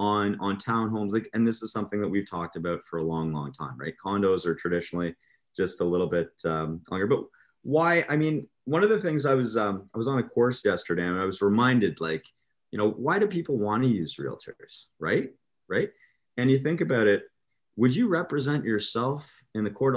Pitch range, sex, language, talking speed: 105-130 Hz, male, English, 215 wpm